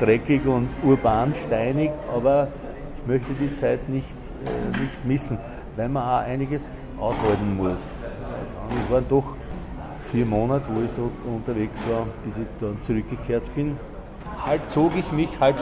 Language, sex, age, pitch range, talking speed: German, male, 50-69, 115-150 Hz, 155 wpm